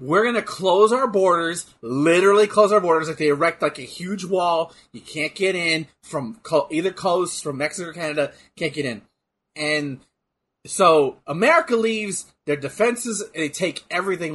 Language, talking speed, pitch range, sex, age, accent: English, 165 wpm, 145-190 Hz, male, 30-49, American